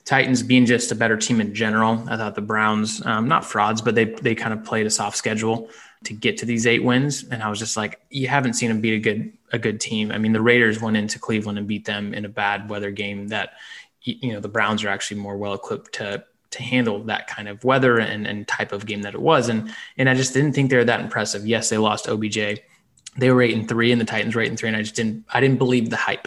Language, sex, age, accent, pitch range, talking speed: English, male, 20-39, American, 110-125 Hz, 275 wpm